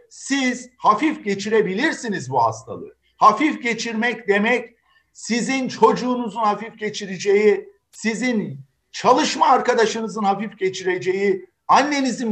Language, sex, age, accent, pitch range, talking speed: Turkish, male, 50-69, native, 200-250 Hz, 90 wpm